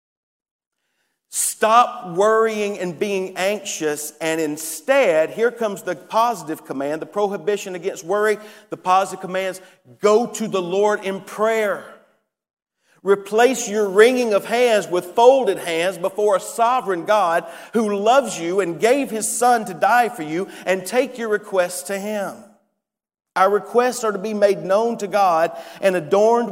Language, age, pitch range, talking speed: English, 40-59, 180-220 Hz, 145 wpm